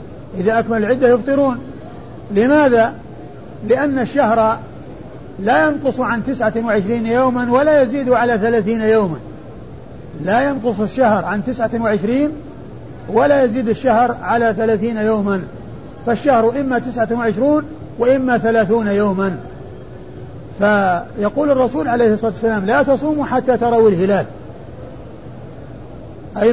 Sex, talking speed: male, 100 wpm